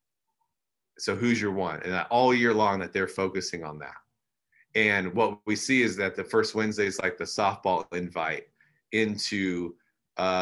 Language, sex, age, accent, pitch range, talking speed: English, male, 30-49, American, 95-120 Hz, 165 wpm